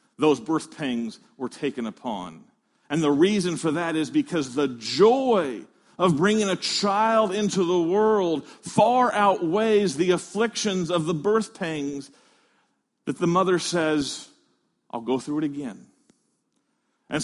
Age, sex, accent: 40-59, male, American